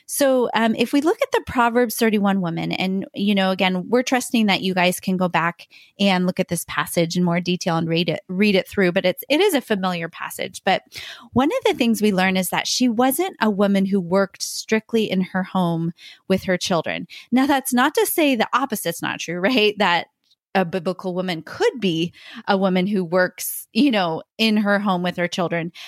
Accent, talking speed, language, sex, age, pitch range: American, 215 wpm, English, female, 20-39, 180-225 Hz